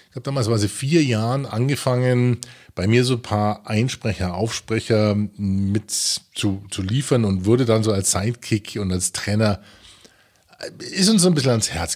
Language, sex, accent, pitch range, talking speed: German, male, German, 95-120 Hz, 170 wpm